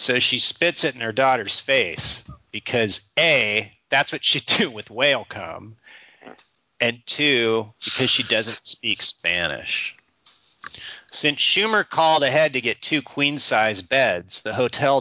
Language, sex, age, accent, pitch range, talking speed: English, male, 30-49, American, 110-145 Hz, 140 wpm